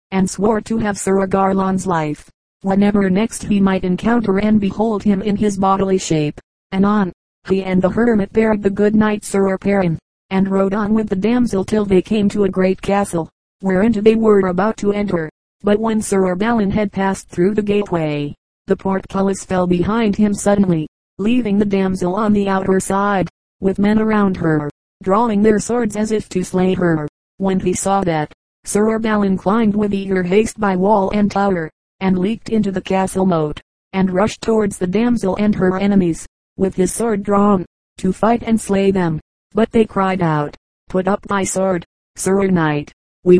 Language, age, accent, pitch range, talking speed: English, 40-59, American, 185-210 Hz, 185 wpm